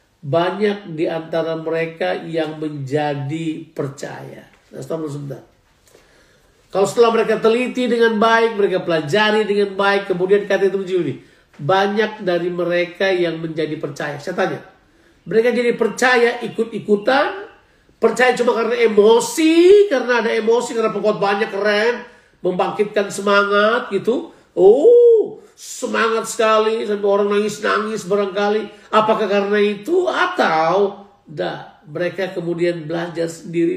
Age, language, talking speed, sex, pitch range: 50-69, Indonesian, 115 wpm, male, 165-220 Hz